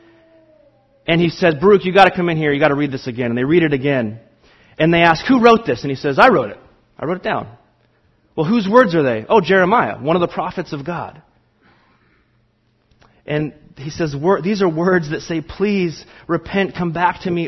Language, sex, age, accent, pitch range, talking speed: English, male, 30-49, American, 140-180 Hz, 220 wpm